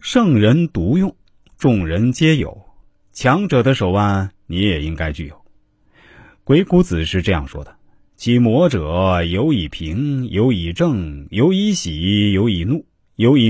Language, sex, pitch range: Chinese, male, 90-135 Hz